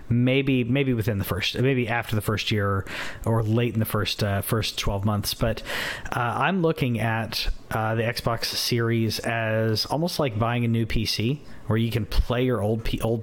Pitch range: 105-125 Hz